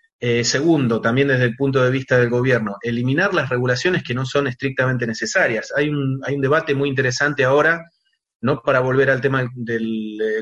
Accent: Argentinian